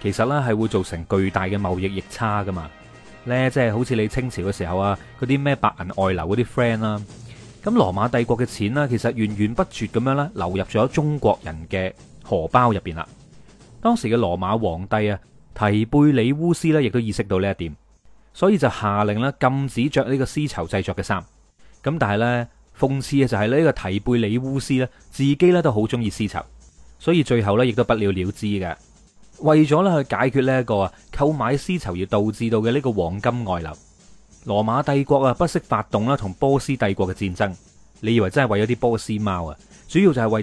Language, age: Chinese, 30-49